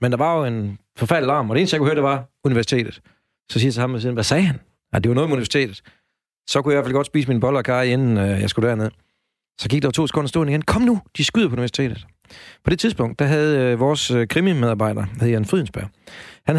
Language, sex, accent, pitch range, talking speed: Danish, male, native, 115-150 Hz, 270 wpm